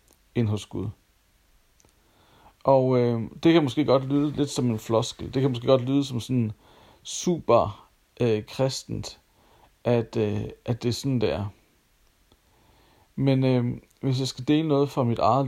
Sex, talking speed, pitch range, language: male, 160 wpm, 110-135 Hz, Danish